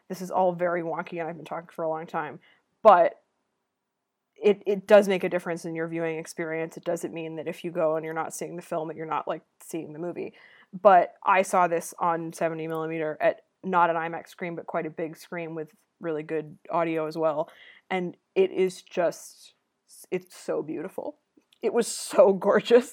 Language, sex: English, female